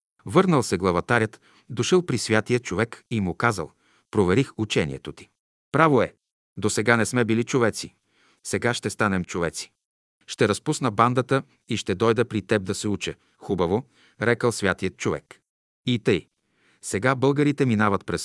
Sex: male